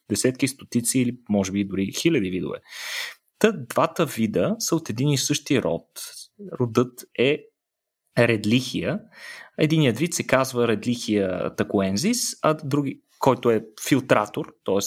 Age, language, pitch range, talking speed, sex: 20-39, Bulgarian, 105-155 Hz, 130 wpm, male